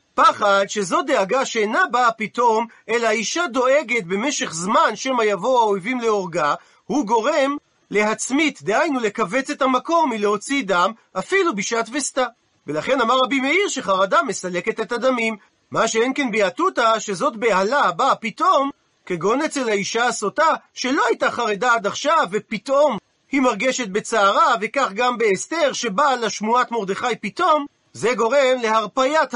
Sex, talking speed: male, 135 wpm